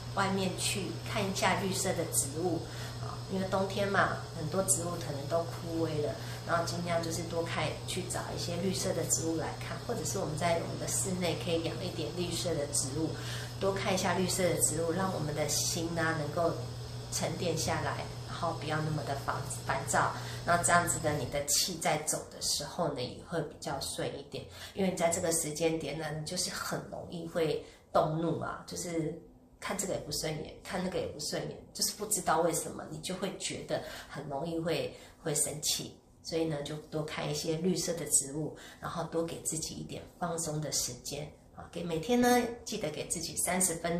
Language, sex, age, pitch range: Chinese, female, 30-49, 150-170 Hz